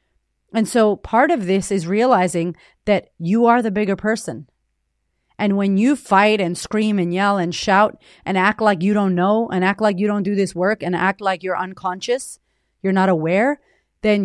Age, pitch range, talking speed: 30-49, 185-230 Hz, 195 wpm